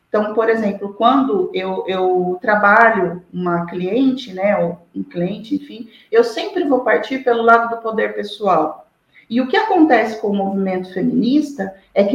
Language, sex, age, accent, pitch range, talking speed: Portuguese, female, 40-59, Brazilian, 195-270 Hz, 160 wpm